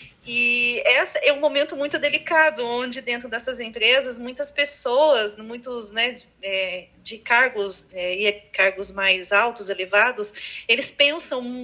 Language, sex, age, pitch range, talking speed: Portuguese, female, 30-49, 220-295 Hz, 140 wpm